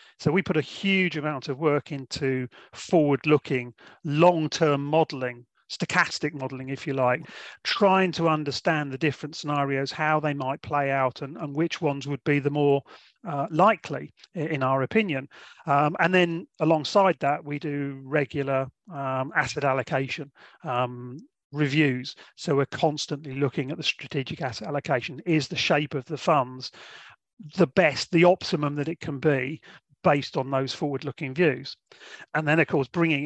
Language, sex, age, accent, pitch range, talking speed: English, male, 40-59, British, 135-155 Hz, 160 wpm